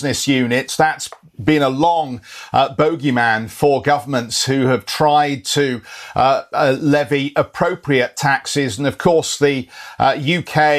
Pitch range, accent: 130-150 Hz, British